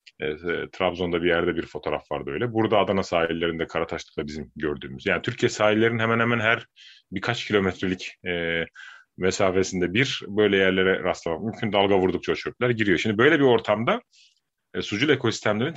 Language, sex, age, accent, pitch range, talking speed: Turkish, male, 30-49, native, 95-125 Hz, 155 wpm